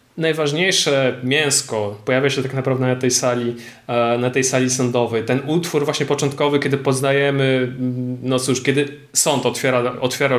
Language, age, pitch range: Polish, 20-39, 120-145 Hz